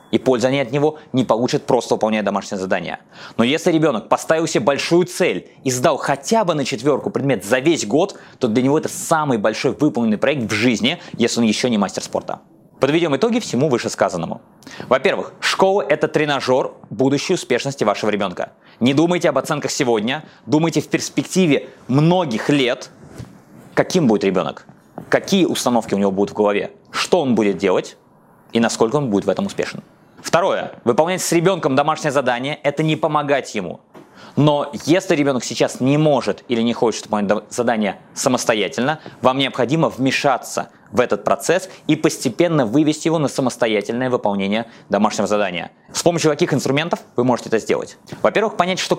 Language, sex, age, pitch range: Russian, male, 20-39, 120-165 Hz